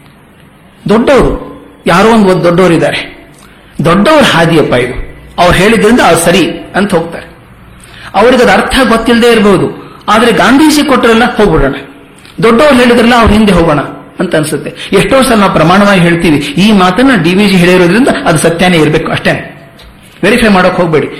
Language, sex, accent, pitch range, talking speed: Kannada, male, native, 155-225 Hz, 130 wpm